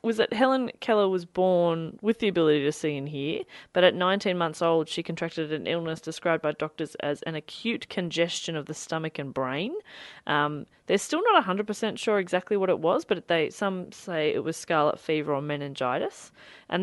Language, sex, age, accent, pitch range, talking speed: English, female, 30-49, Australian, 155-190 Hz, 195 wpm